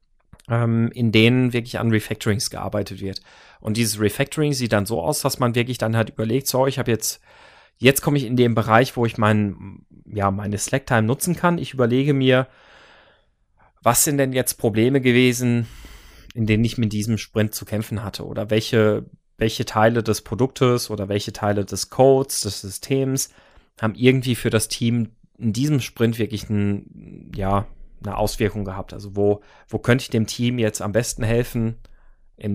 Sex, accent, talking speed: male, German, 175 wpm